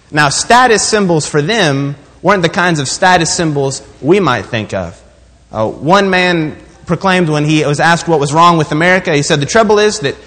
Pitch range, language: 155-200 Hz, English